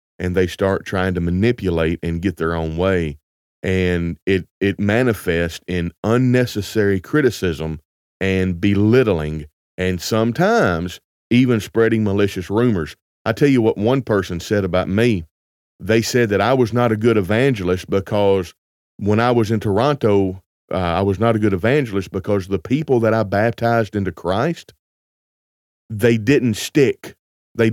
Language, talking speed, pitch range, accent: English, 150 wpm, 90-115 Hz, American